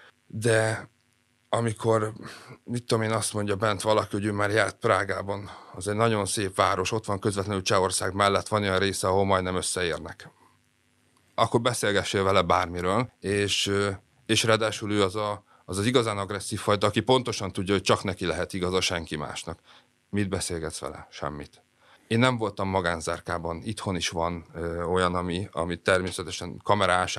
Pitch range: 90-110 Hz